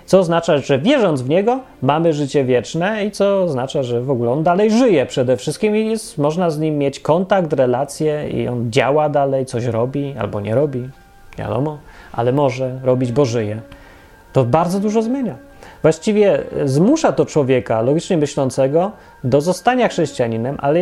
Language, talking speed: Polish, 165 wpm